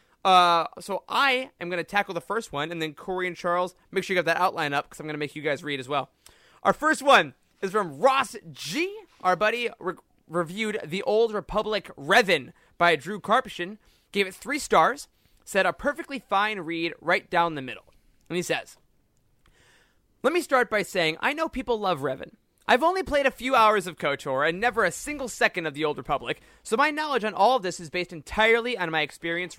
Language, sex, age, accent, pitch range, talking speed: English, male, 20-39, American, 170-230 Hz, 215 wpm